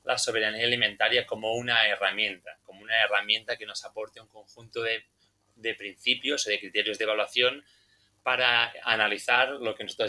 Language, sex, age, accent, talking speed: Spanish, male, 20-39, Spanish, 160 wpm